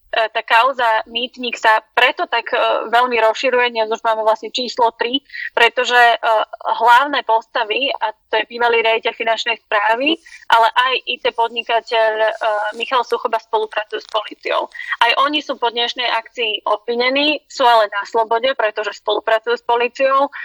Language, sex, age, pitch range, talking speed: Slovak, female, 20-39, 220-245 Hz, 150 wpm